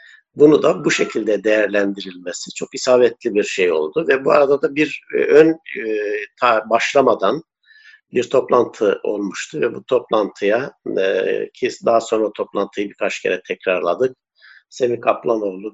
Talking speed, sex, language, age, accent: 130 wpm, male, Turkish, 50-69, native